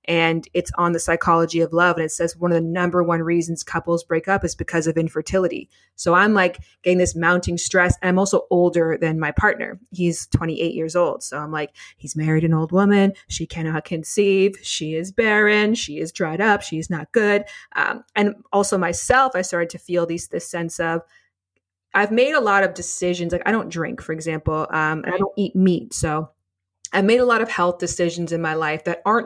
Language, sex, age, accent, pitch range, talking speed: English, female, 20-39, American, 165-205 Hz, 215 wpm